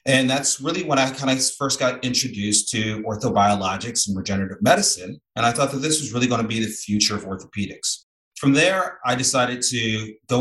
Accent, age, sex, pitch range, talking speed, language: American, 30-49, male, 105-130 Hz, 200 wpm, English